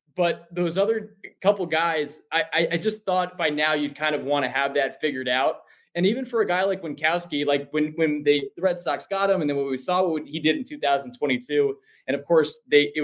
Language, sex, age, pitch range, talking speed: English, male, 20-39, 125-160 Hz, 235 wpm